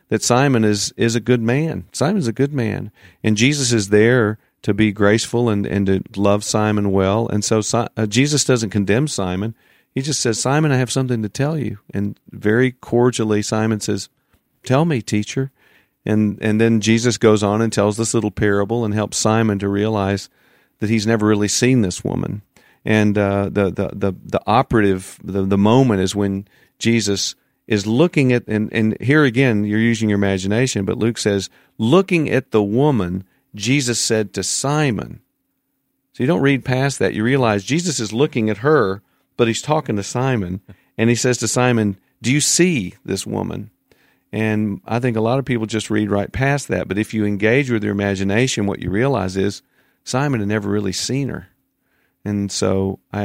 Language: English